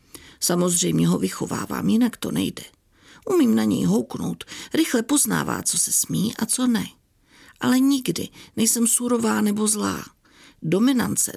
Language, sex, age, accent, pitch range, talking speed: Czech, female, 50-69, native, 175-225 Hz, 130 wpm